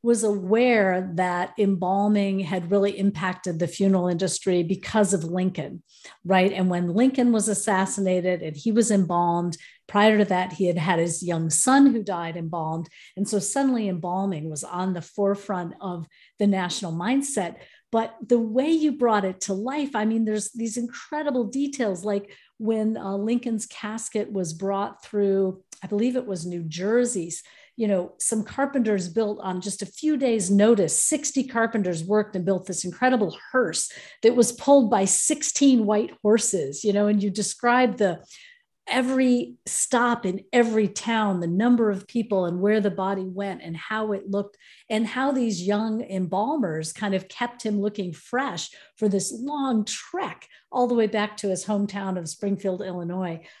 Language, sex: English, female